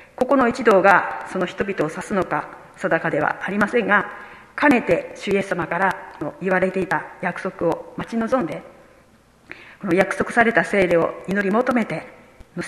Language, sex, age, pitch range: Japanese, female, 40-59, 180-240 Hz